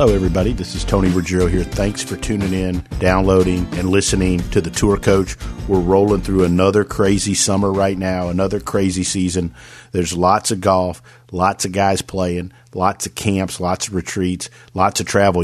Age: 50-69